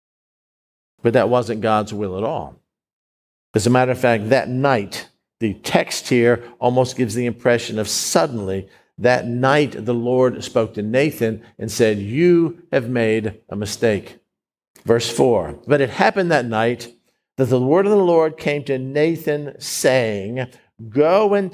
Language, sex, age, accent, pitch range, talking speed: English, male, 50-69, American, 120-165 Hz, 155 wpm